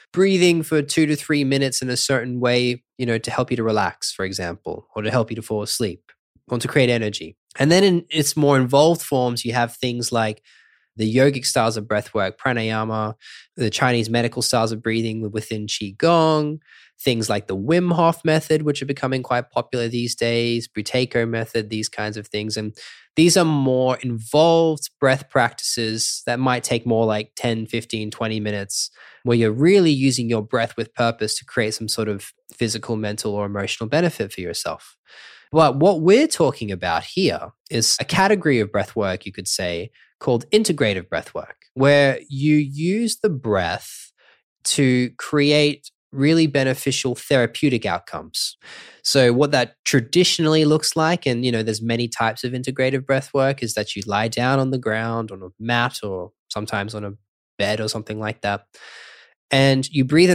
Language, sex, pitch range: English, male, 110-140 Hz